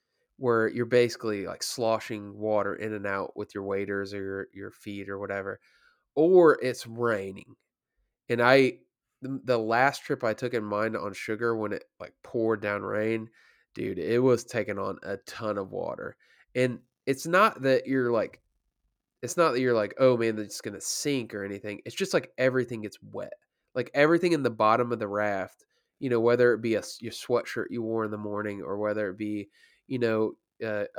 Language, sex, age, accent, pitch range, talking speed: English, male, 20-39, American, 105-130 Hz, 195 wpm